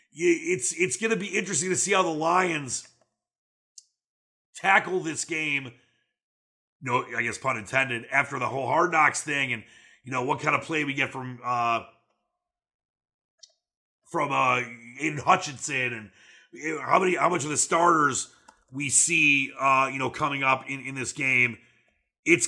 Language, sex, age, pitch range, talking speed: English, male, 30-49, 130-165 Hz, 165 wpm